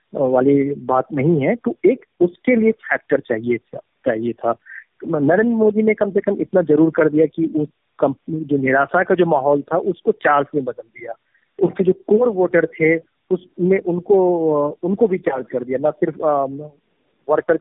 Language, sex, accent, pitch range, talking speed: Hindi, male, native, 145-185 Hz, 175 wpm